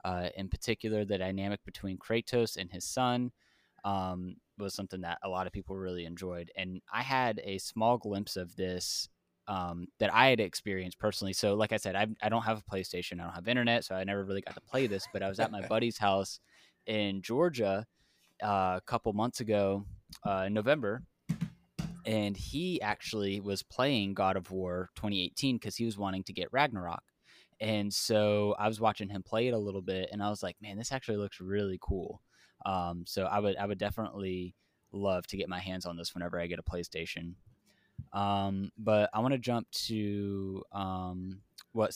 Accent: American